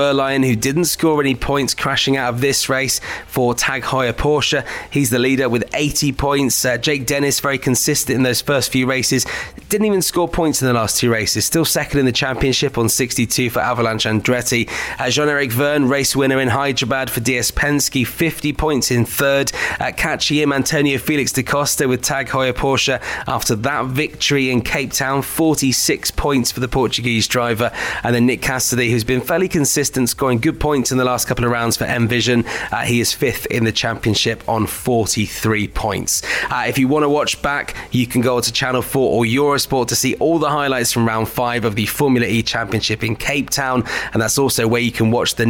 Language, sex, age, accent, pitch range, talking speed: English, male, 20-39, British, 120-140 Hz, 205 wpm